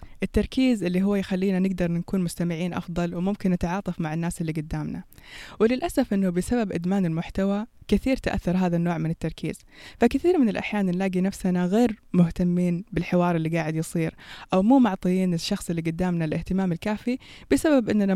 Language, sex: Persian, female